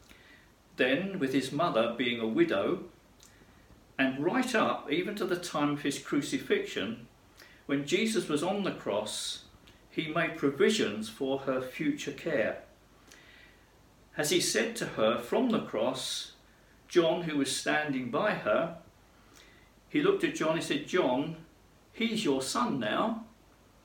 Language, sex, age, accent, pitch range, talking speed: English, male, 50-69, British, 120-190 Hz, 140 wpm